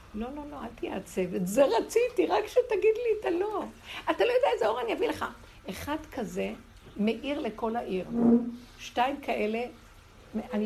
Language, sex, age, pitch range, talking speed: Hebrew, female, 60-79, 195-245 Hz, 165 wpm